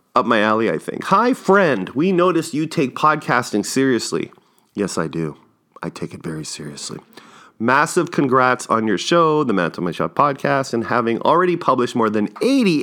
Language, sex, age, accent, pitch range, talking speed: English, male, 40-59, American, 110-155 Hz, 180 wpm